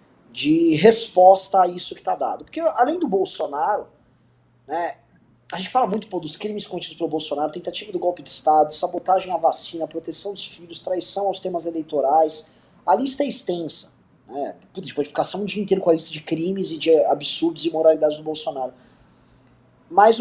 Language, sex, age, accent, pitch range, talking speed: Portuguese, male, 20-39, Brazilian, 170-245 Hz, 185 wpm